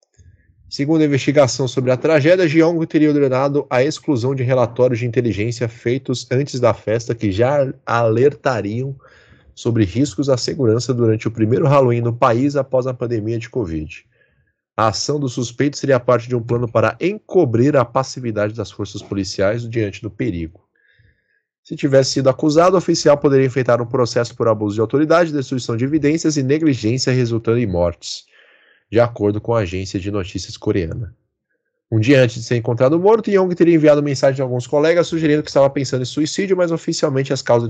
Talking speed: 175 wpm